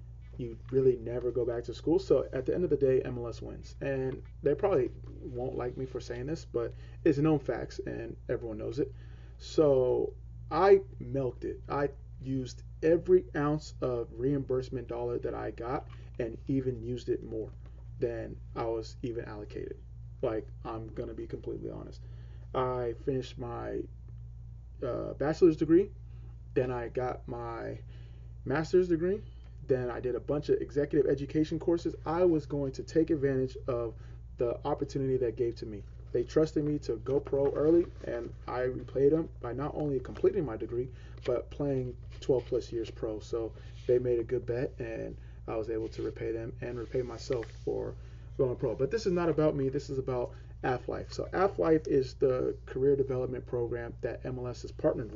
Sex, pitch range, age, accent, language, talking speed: male, 110-140 Hz, 30-49, American, English, 175 wpm